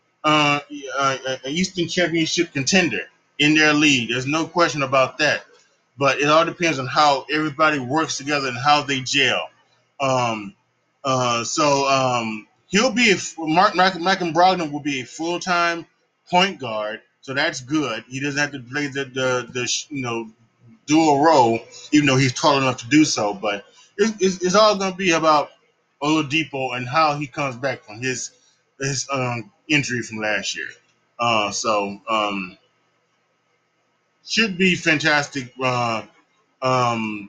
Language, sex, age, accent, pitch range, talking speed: English, male, 20-39, American, 130-160 Hz, 155 wpm